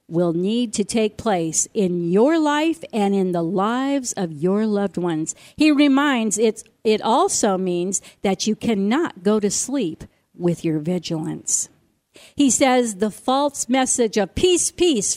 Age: 50-69